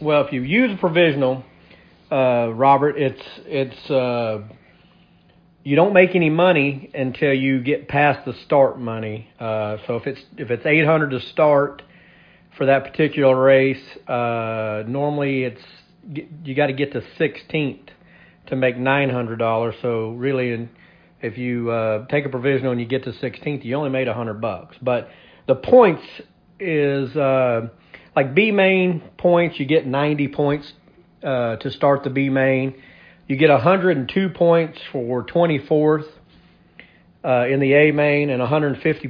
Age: 40-59